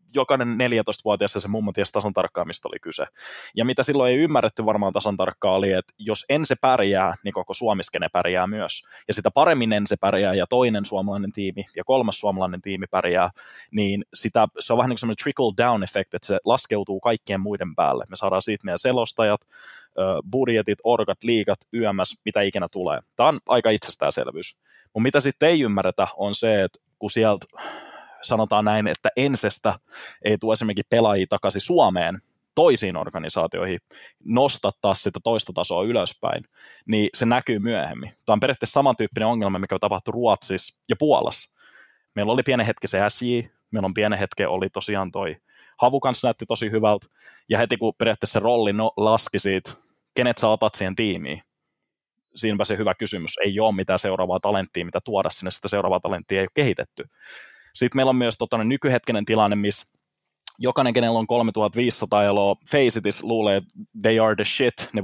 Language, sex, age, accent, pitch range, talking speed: Finnish, male, 20-39, native, 100-120 Hz, 170 wpm